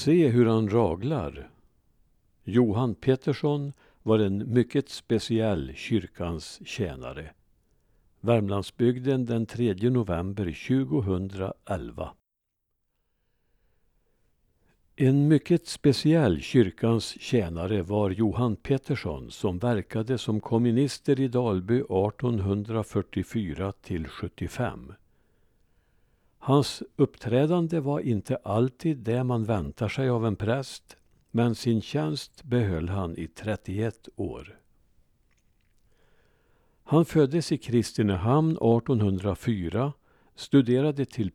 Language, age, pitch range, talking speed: Swedish, 60-79, 100-130 Hz, 85 wpm